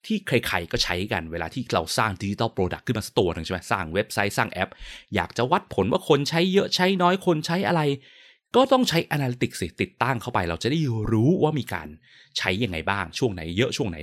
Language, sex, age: Thai, male, 20-39